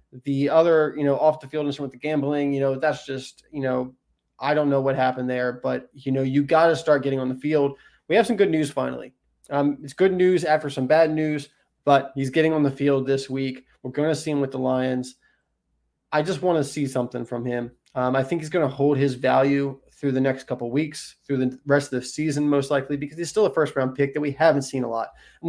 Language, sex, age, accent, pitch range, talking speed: English, male, 20-39, American, 130-150 Hz, 255 wpm